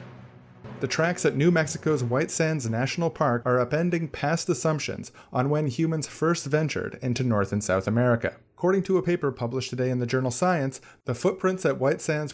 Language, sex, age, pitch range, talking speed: English, male, 30-49, 120-155 Hz, 185 wpm